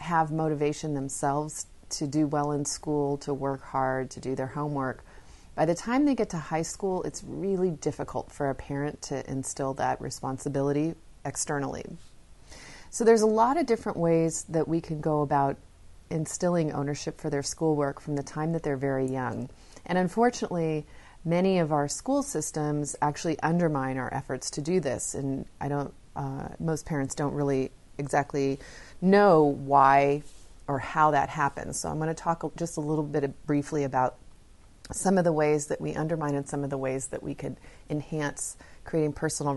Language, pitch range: English, 140-175 Hz